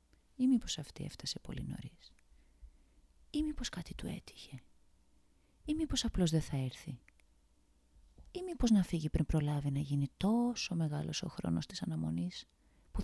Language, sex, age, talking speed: Greek, female, 30-49, 145 wpm